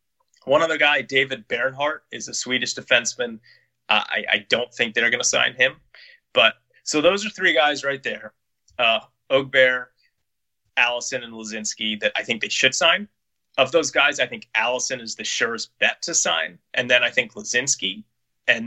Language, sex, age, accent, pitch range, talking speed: English, male, 30-49, American, 110-145 Hz, 180 wpm